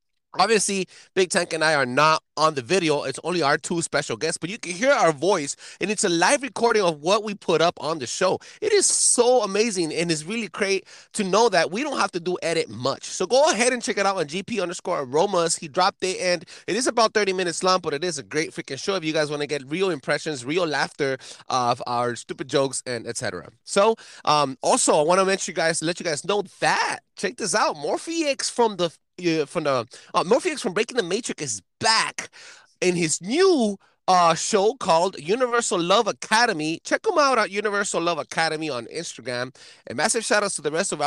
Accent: American